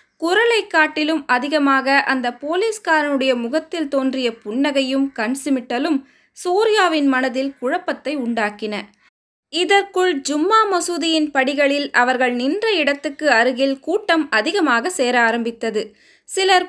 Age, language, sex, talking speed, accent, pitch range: 20-39, Tamil, female, 95 wpm, native, 250-320 Hz